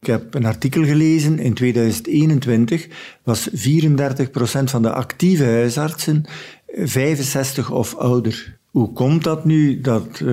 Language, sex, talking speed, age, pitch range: Dutch, male, 120 wpm, 50-69, 115-140 Hz